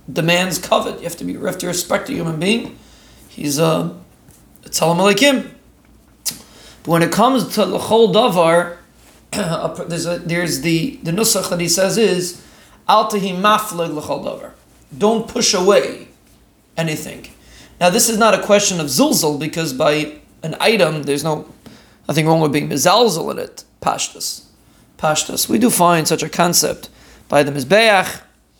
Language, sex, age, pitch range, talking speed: English, male, 30-49, 155-195 Hz, 145 wpm